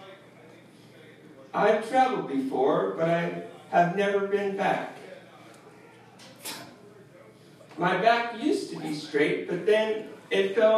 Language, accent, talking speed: English, American, 105 wpm